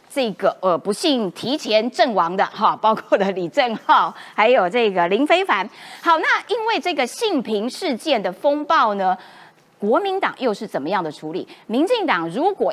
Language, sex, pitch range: Chinese, female, 210-330 Hz